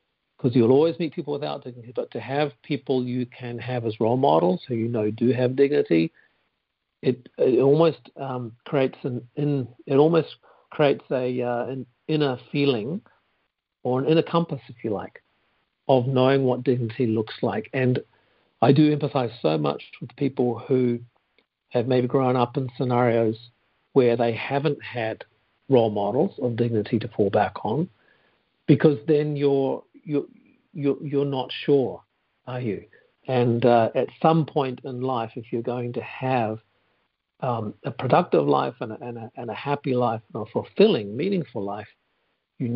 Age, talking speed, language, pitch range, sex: 50-69, 155 wpm, English, 115-140 Hz, male